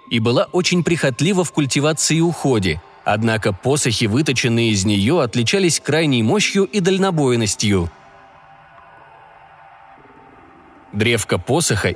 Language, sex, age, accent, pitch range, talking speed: Russian, male, 20-39, native, 115-170 Hz, 100 wpm